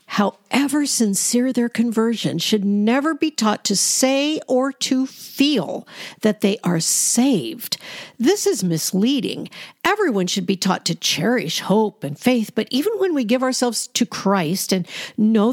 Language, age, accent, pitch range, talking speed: English, 50-69, American, 190-250 Hz, 150 wpm